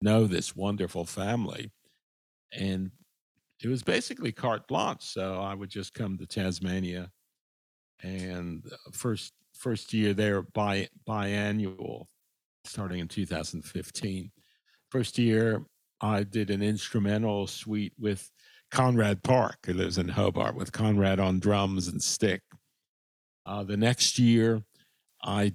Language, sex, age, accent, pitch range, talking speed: English, male, 50-69, American, 95-110 Hz, 130 wpm